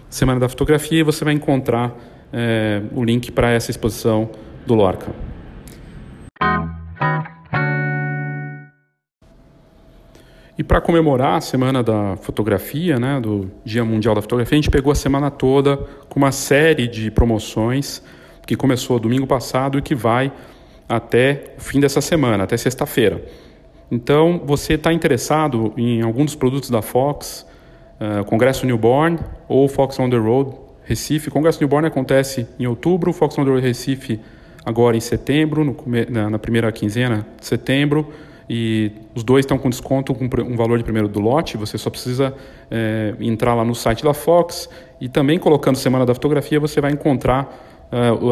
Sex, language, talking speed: male, Portuguese, 150 wpm